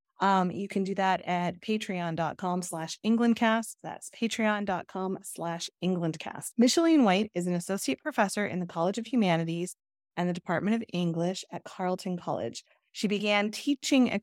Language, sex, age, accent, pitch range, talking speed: English, female, 30-49, American, 175-225 Hz, 150 wpm